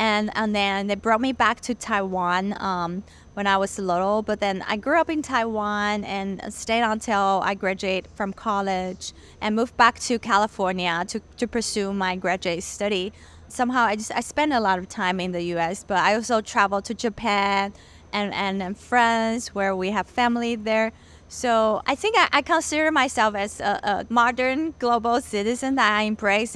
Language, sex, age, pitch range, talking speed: English, female, 20-39, 200-245 Hz, 185 wpm